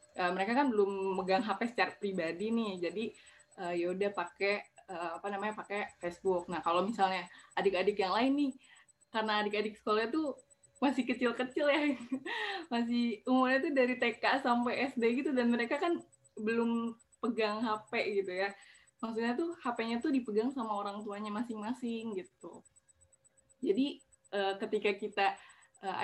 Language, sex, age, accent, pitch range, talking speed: Indonesian, female, 10-29, native, 195-245 Hz, 150 wpm